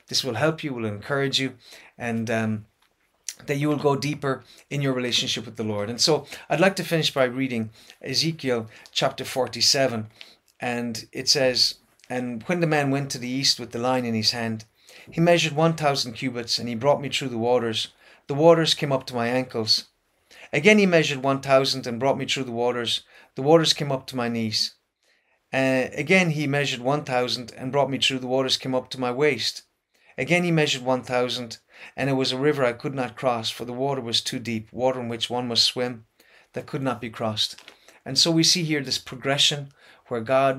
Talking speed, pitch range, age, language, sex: 210 wpm, 120-145 Hz, 30-49, English, male